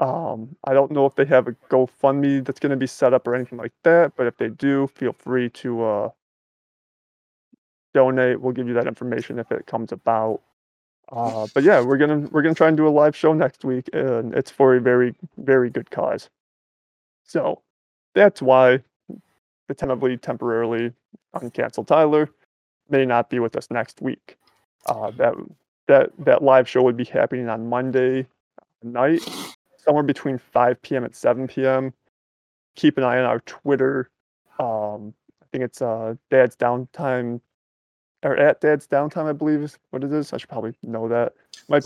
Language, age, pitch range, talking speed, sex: English, 20-39, 115-140 Hz, 175 wpm, male